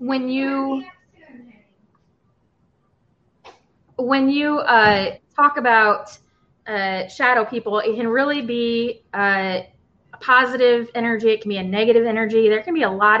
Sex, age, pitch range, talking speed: female, 20-39, 185-235 Hz, 130 wpm